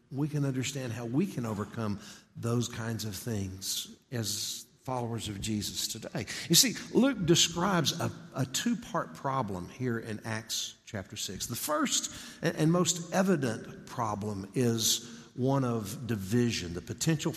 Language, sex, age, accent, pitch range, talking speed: English, male, 60-79, American, 110-140 Hz, 140 wpm